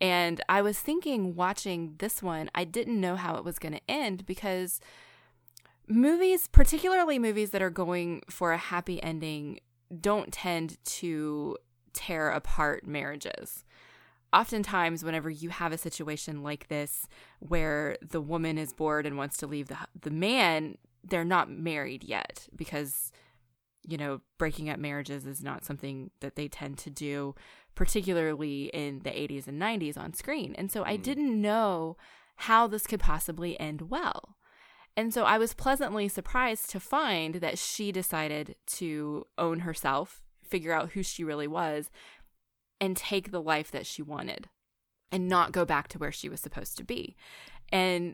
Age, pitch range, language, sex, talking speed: 20-39, 150-190 Hz, English, female, 160 wpm